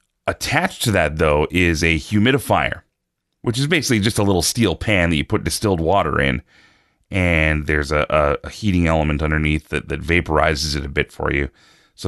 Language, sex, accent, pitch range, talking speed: English, male, American, 80-100 Hz, 175 wpm